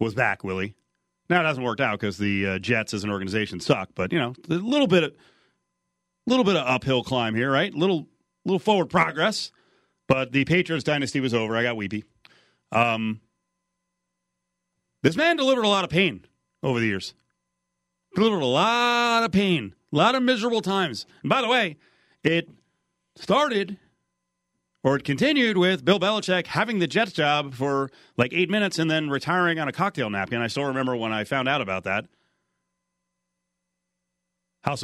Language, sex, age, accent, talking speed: English, male, 40-59, American, 175 wpm